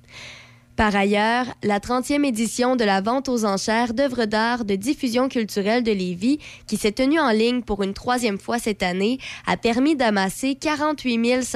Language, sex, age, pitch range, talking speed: French, female, 20-39, 200-245 Hz, 165 wpm